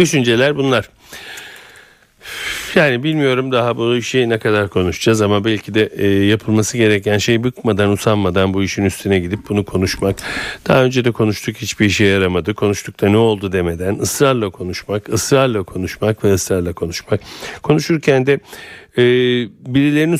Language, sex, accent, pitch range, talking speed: Turkish, male, native, 95-120 Hz, 135 wpm